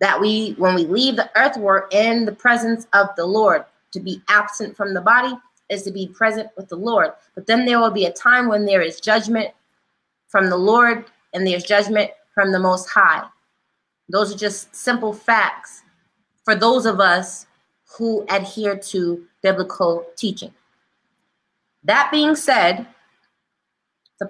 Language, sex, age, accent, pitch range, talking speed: English, female, 20-39, American, 190-230 Hz, 165 wpm